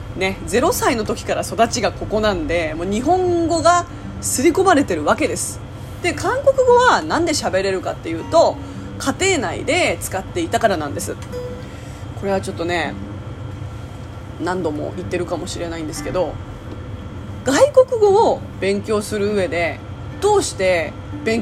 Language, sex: Japanese, female